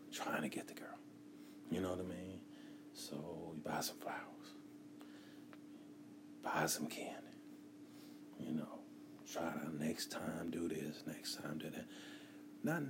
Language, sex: English, male